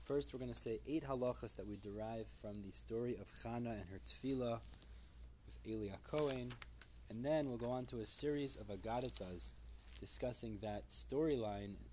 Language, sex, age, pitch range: English, male, 20-39, 95-125 Hz